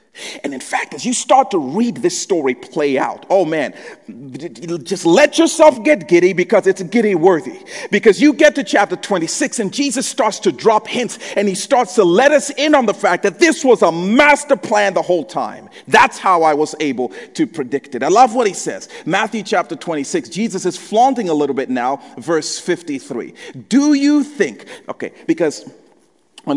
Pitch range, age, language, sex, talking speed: 170-265 Hz, 40-59, English, male, 190 wpm